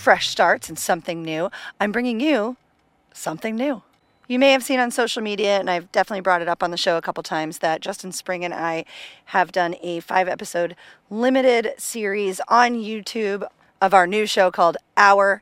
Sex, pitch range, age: female, 180-245 Hz, 40-59